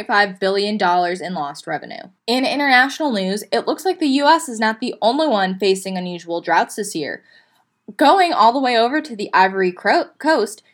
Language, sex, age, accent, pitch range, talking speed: English, female, 10-29, American, 195-245 Hz, 185 wpm